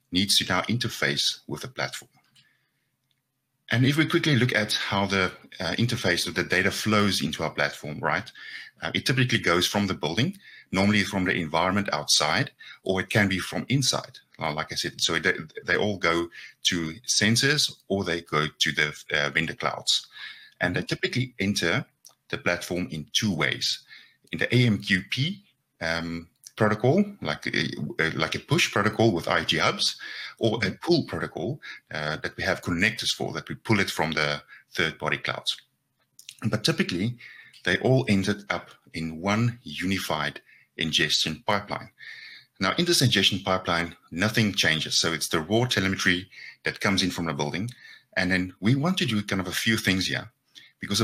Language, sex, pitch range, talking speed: English, male, 90-115 Hz, 165 wpm